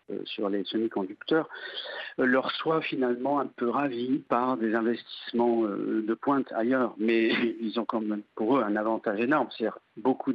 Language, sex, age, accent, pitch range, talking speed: French, male, 50-69, French, 115-145 Hz, 155 wpm